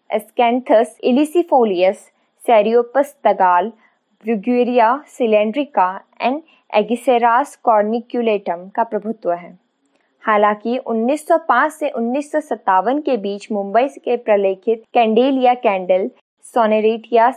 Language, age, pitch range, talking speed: Hindi, 20-39, 200-255 Hz, 80 wpm